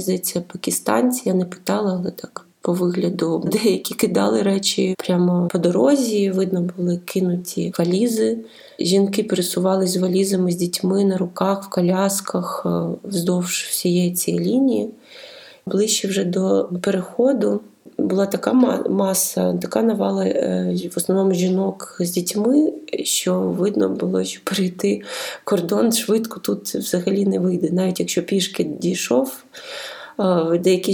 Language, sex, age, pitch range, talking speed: Ukrainian, female, 20-39, 175-195 Hz, 120 wpm